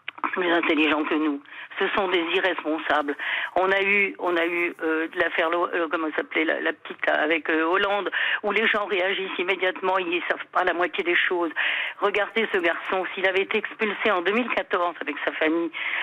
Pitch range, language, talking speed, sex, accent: 185-260 Hz, French, 200 wpm, female, French